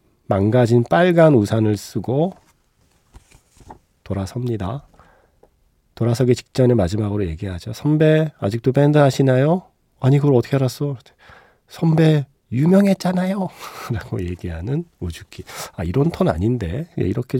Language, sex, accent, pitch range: Korean, male, native, 100-145 Hz